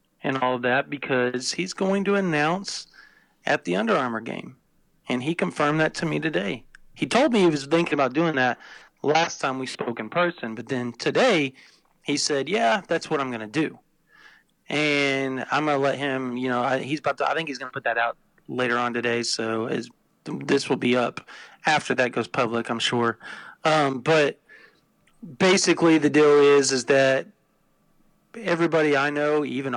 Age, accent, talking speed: 40-59, American, 180 wpm